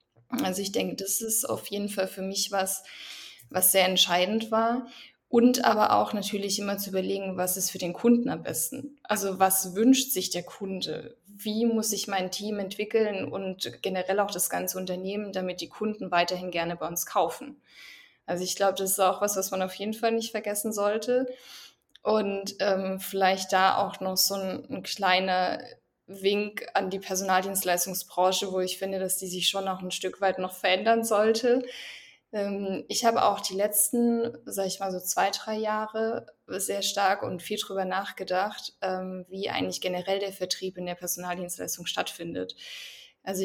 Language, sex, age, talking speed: German, female, 20-39, 175 wpm